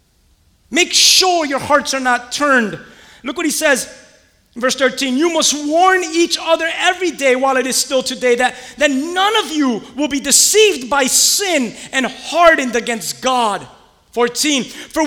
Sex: male